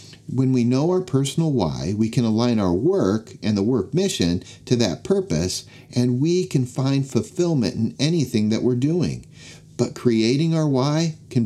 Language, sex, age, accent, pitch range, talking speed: English, male, 50-69, American, 110-135 Hz, 175 wpm